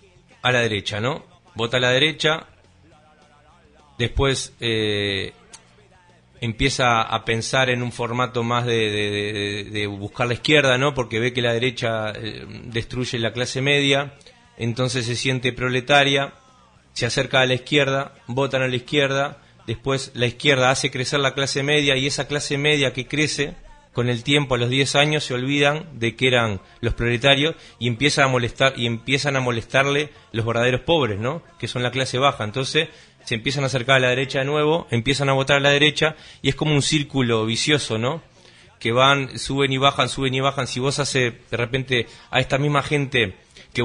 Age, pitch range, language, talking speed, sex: 30-49, 115-140 Hz, Portuguese, 175 wpm, male